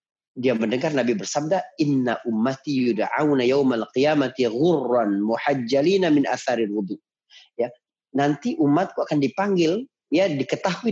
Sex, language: male, Indonesian